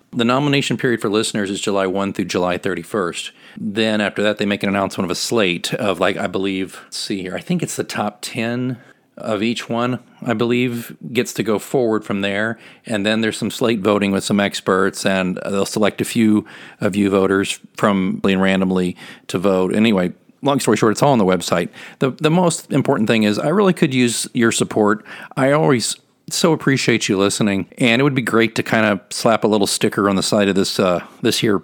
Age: 40-59